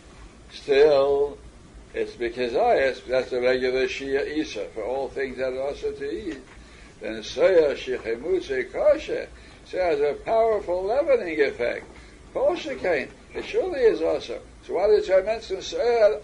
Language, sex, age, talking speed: English, male, 60-79, 150 wpm